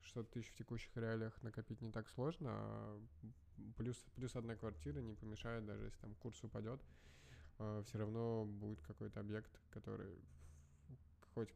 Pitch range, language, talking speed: 105-120 Hz, Russian, 145 wpm